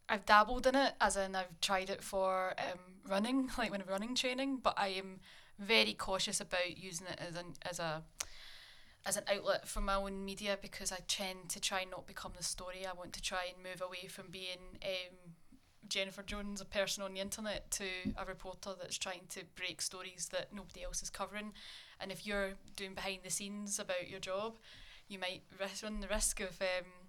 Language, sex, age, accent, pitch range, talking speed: English, female, 10-29, British, 185-205 Hz, 205 wpm